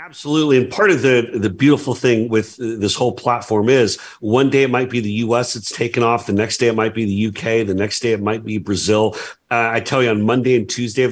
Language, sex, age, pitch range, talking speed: English, male, 40-59, 100-120 Hz, 255 wpm